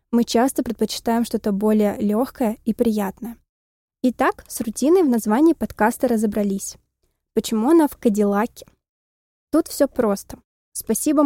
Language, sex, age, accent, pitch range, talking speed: Russian, female, 20-39, native, 215-255 Hz, 125 wpm